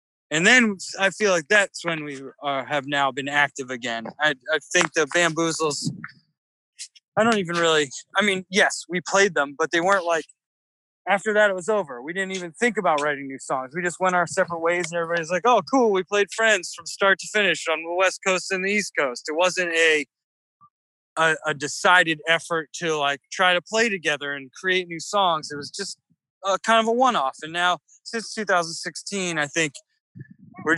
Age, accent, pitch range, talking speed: 20-39, American, 155-195 Hz, 205 wpm